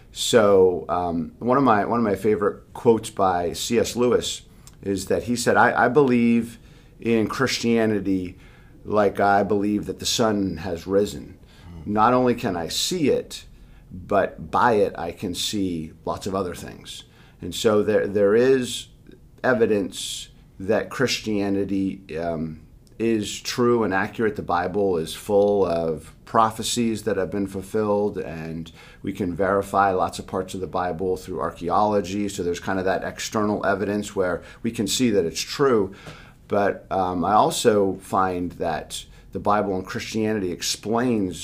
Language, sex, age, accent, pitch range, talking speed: English, male, 50-69, American, 90-110 Hz, 155 wpm